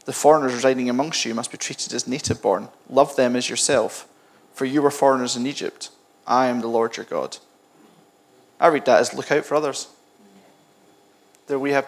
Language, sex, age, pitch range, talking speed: English, male, 20-39, 110-135 Hz, 190 wpm